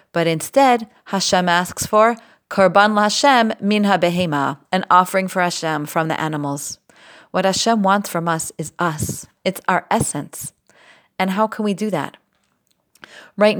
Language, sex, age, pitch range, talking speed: English, female, 30-49, 170-205 Hz, 145 wpm